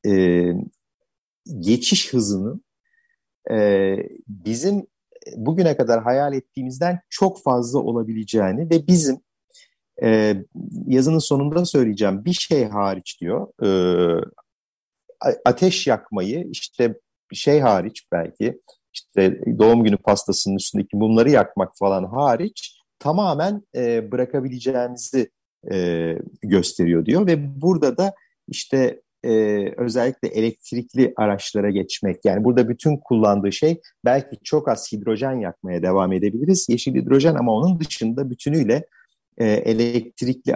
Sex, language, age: male, Turkish, 50-69